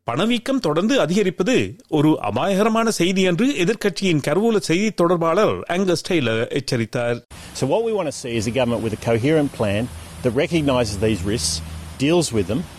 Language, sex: Tamil, male